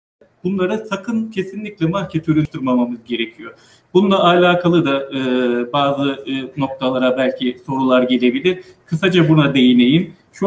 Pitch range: 130-180 Hz